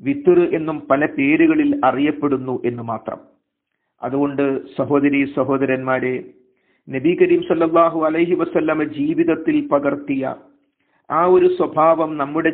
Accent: native